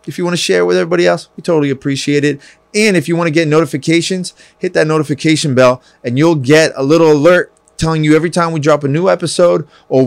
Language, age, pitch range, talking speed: English, 20-39, 125-160 Hz, 230 wpm